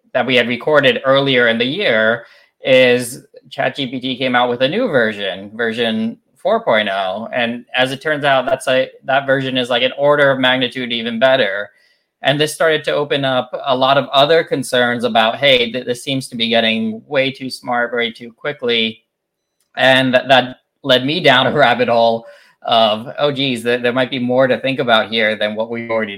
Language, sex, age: English, male, 20-39